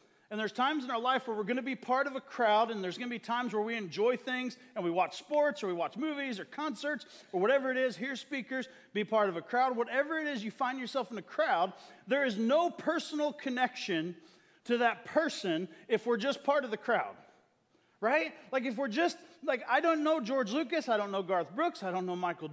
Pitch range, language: 225-295 Hz, English